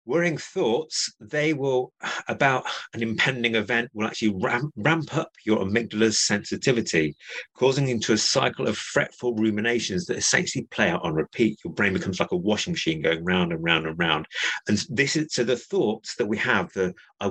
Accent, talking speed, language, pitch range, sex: British, 185 wpm, English, 100-140 Hz, male